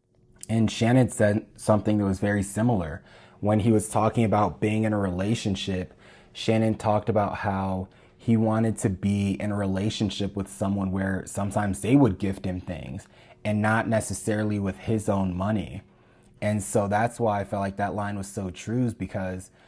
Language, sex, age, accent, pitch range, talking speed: English, male, 20-39, American, 95-110 Hz, 175 wpm